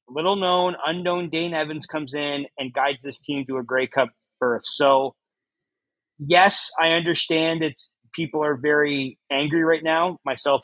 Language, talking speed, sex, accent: English, 160 wpm, male, American